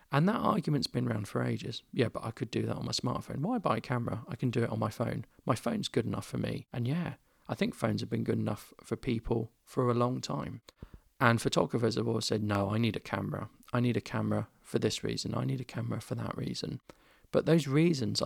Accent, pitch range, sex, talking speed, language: British, 110-135 Hz, male, 245 wpm, English